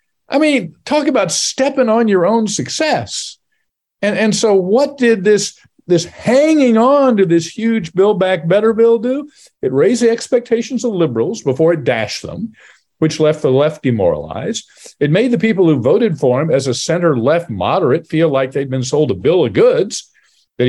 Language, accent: English, American